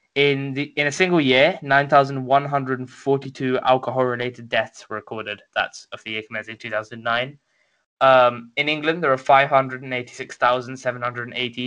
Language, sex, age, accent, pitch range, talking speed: English, male, 10-29, British, 120-135 Hz, 120 wpm